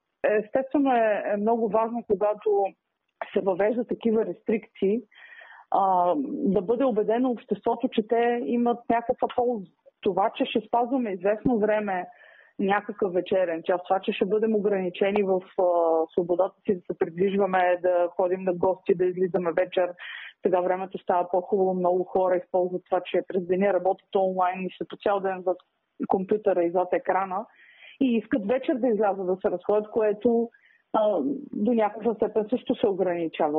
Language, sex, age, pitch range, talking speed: Bulgarian, female, 30-49, 185-230 Hz, 150 wpm